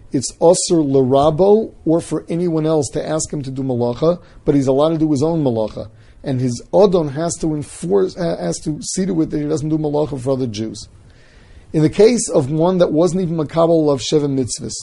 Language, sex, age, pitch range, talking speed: English, male, 40-59, 125-170 Hz, 210 wpm